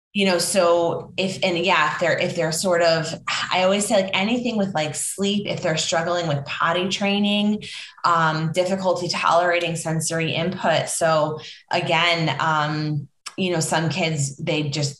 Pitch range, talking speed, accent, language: 155-180 Hz, 160 wpm, American, English